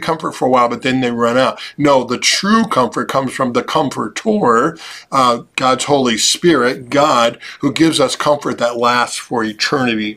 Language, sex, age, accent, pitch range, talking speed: English, male, 50-69, American, 120-150 Hz, 175 wpm